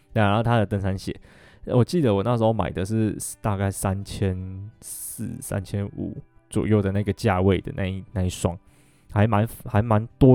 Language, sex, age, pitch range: Chinese, male, 20-39, 95-115 Hz